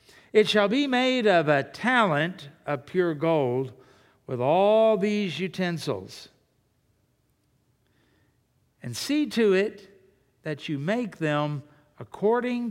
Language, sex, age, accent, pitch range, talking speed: English, male, 60-79, American, 130-190 Hz, 110 wpm